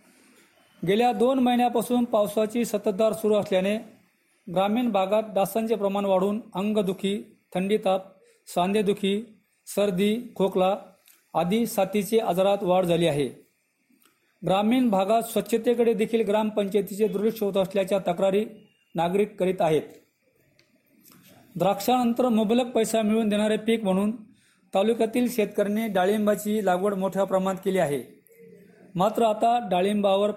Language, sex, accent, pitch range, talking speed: Marathi, male, native, 195-225 Hz, 105 wpm